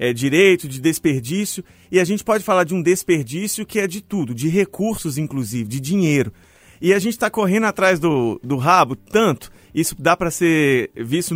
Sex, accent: male, Brazilian